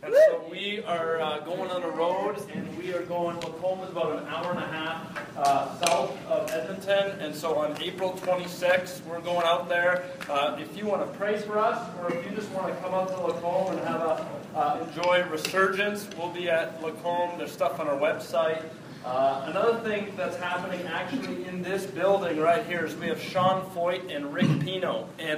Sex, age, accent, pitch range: male, 30-49, American, 165-195 Hz